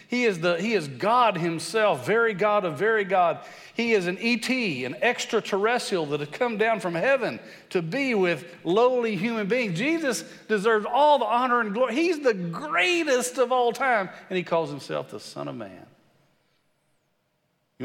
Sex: male